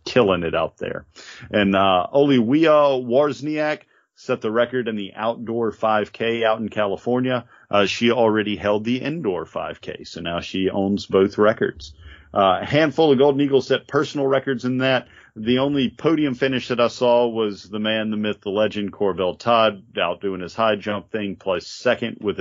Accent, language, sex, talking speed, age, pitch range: American, English, male, 180 wpm, 40-59, 100-125 Hz